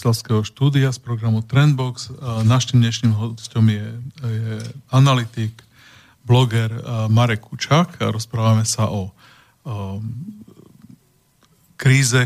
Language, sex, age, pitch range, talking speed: Slovak, male, 40-59, 110-130 Hz, 100 wpm